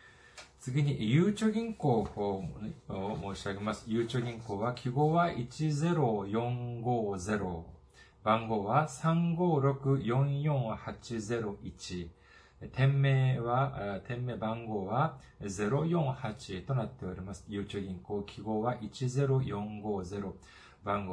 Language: Japanese